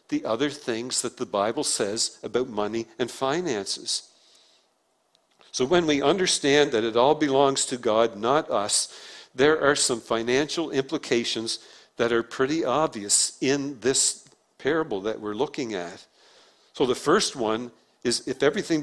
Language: English